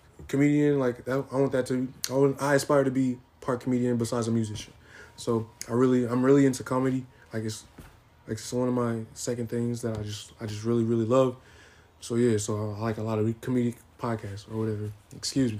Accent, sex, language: American, male, English